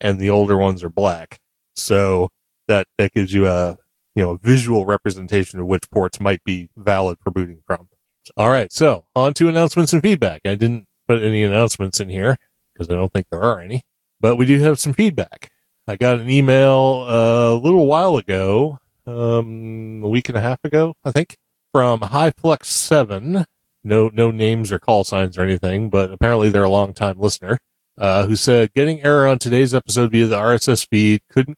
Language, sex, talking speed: English, male, 195 wpm